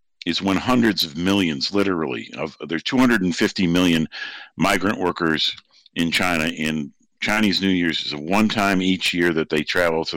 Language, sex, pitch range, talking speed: English, male, 80-95 Hz, 165 wpm